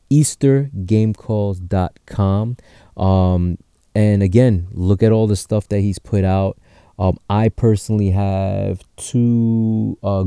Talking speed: 110 wpm